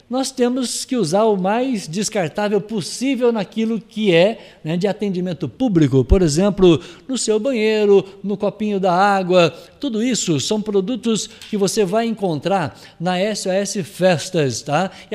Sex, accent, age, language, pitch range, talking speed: male, Brazilian, 60-79, Portuguese, 180-230 Hz, 145 wpm